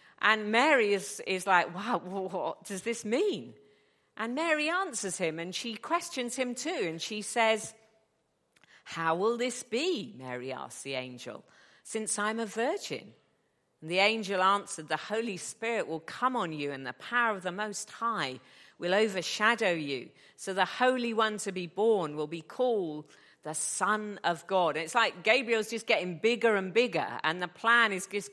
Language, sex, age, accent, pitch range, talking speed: English, female, 50-69, British, 160-220 Hz, 180 wpm